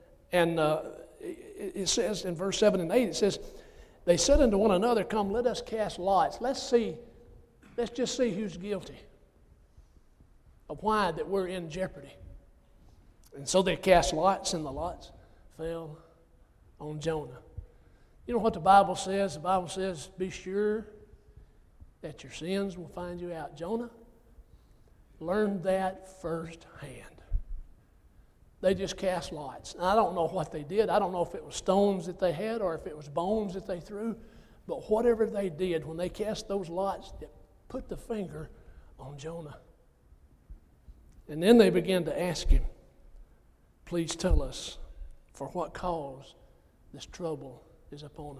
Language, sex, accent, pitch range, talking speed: English, male, American, 145-200 Hz, 160 wpm